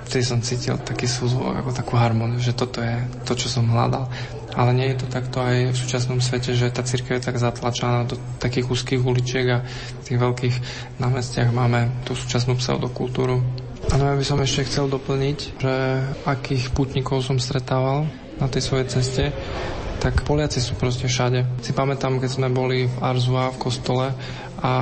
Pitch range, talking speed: 125-130 Hz, 180 wpm